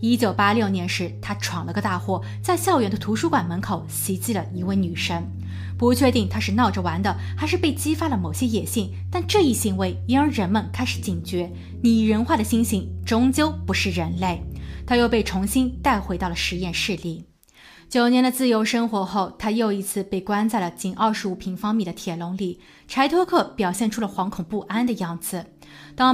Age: 20-39